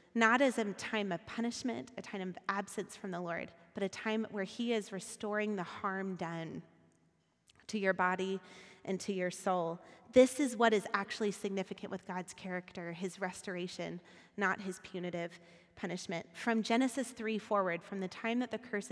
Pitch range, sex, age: 185-225 Hz, female, 30-49